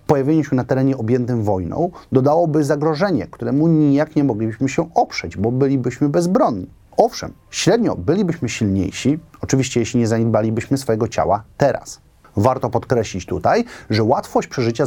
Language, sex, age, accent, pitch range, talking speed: Polish, male, 30-49, native, 110-150 Hz, 135 wpm